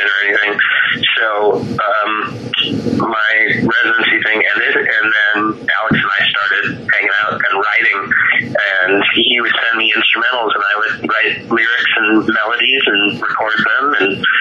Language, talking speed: English, 145 wpm